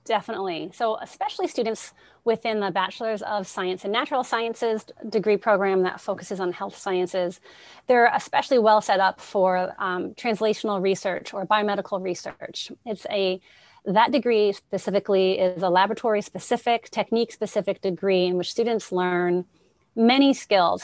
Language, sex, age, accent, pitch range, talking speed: English, female, 30-49, American, 190-225 Hz, 140 wpm